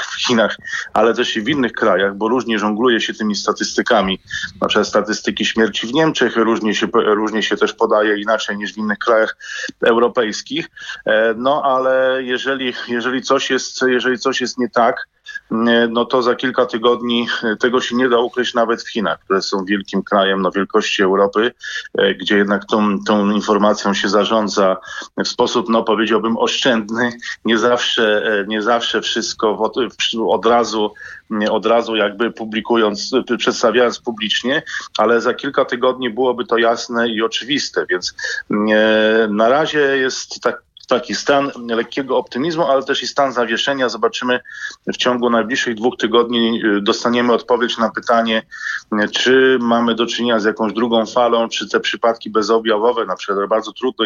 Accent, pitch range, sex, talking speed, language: native, 110-125 Hz, male, 150 wpm, Polish